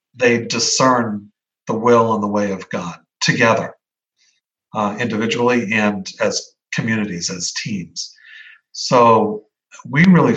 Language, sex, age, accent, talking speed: English, male, 50-69, American, 115 wpm